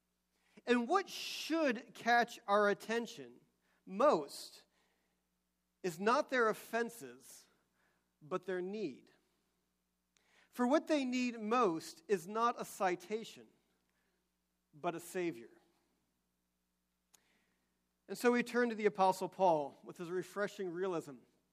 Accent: American